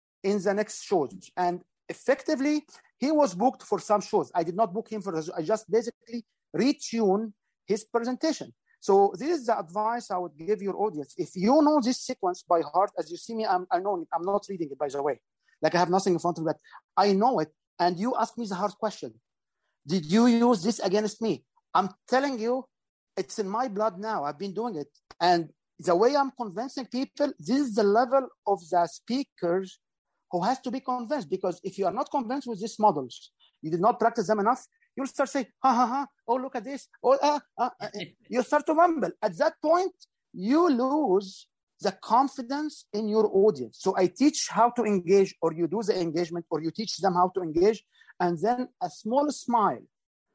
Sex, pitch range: male, 185-260 Hz